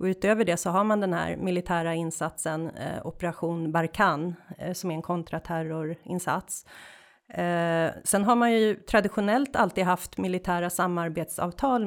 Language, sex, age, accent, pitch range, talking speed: Swedish, female, 30-49, native, 170-205 Hz, 140 wpm